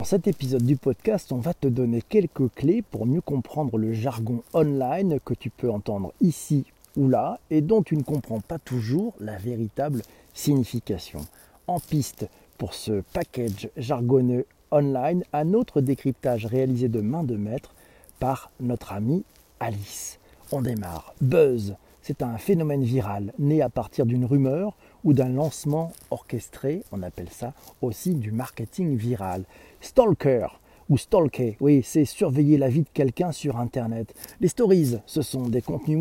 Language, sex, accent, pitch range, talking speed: French, male, French, 120-165 Hz, 155 wpm